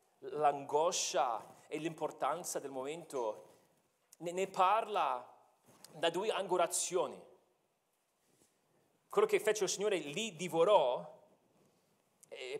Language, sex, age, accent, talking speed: Italian, male, 40-59, native, 85 wpm